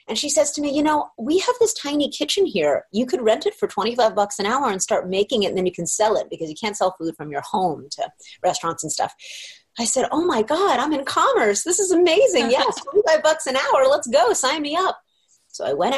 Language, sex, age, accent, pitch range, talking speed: English, female, 30-49, American, 210-310 Hz, 255 wpm